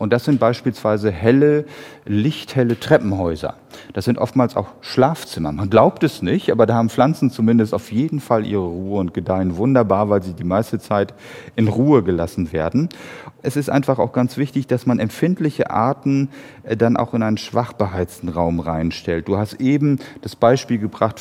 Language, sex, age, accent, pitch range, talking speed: German, male, 40-59, German, 105-130 Hz, 175 wpm